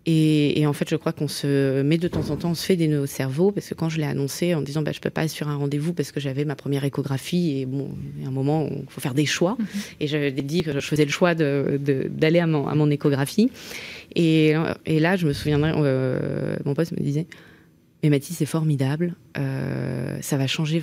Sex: female